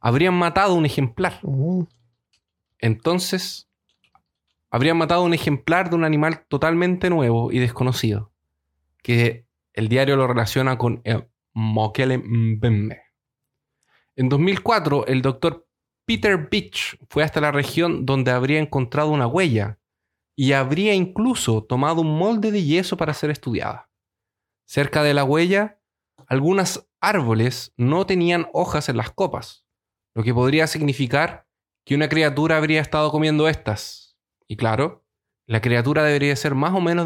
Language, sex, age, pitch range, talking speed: Spanish, male, 30-49, 115-160 Hz, 135 wpm